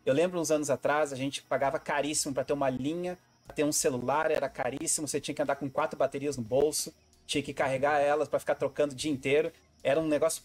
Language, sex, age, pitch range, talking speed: Portuguese, male, 30-49, 135-165 Hz, 235 wpm